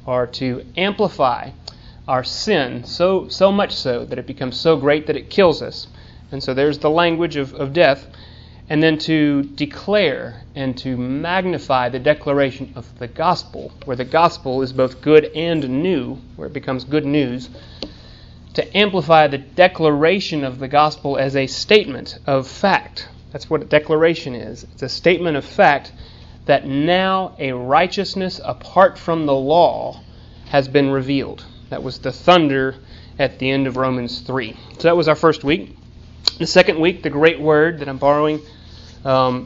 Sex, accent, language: male, American, English